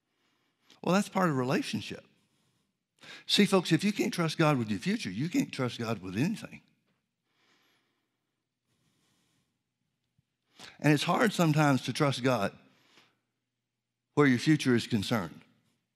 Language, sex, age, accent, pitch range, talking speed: English, male, 60-79, American, 120-145 Hz, 125 wpm